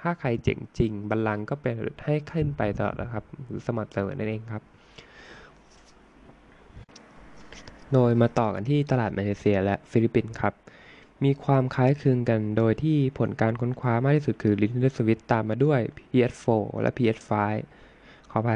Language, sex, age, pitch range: Thai, male, 20-39, 110-130 Hz